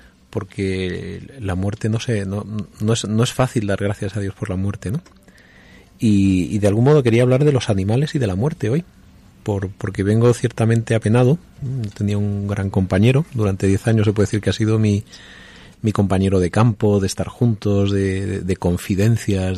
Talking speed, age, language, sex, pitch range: 195 wpm, 30-49, Spanish, male, 95-115 Hz